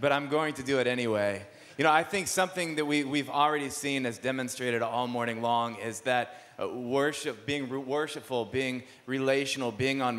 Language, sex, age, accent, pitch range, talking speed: English, male, 30-49, American, 115-145 Hz, 190 wpm